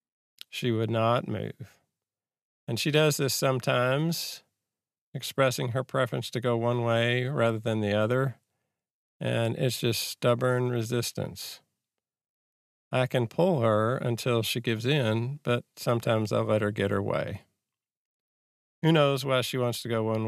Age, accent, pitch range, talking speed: 50-69, American, 110-135 Hz, 145 wpm